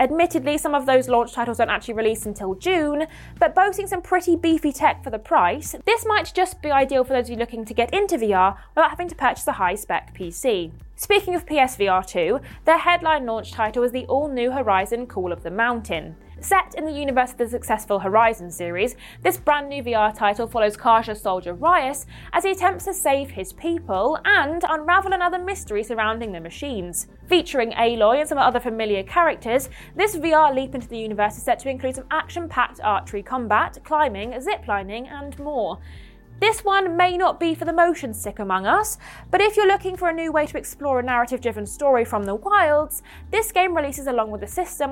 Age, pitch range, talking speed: 20-39, 220-335 Hz, 200 wpm